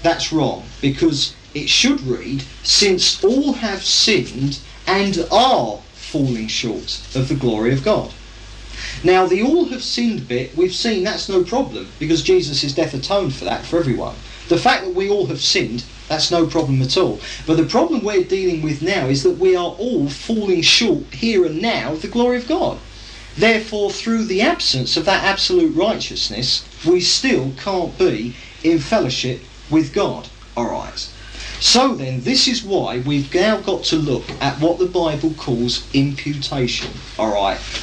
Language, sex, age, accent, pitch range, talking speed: English, male, 40-59, British, 130-190 Hz, 170 wpm